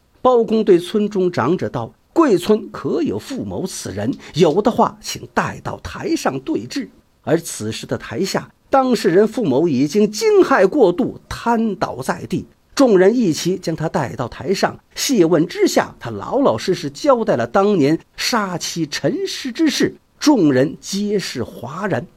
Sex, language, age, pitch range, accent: male, Chinese, 50-69, 185-305 Hz, native